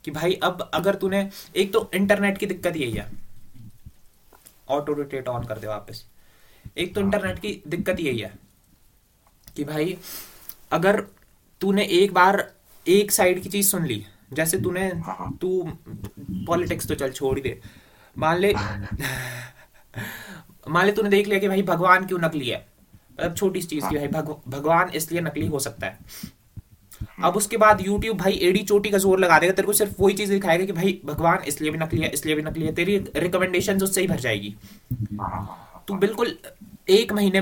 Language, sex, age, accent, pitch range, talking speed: Hindi, male, 20-39, native, 140-200 Hz, 130 wpm